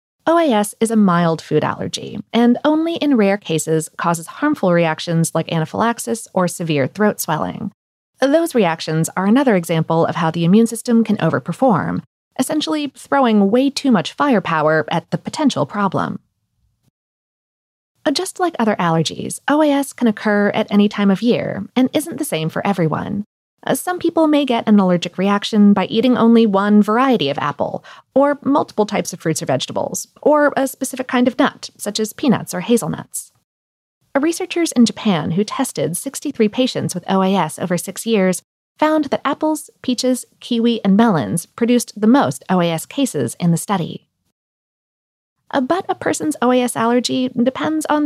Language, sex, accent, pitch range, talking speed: English, female, American, 180-265 Hz, 155 wpm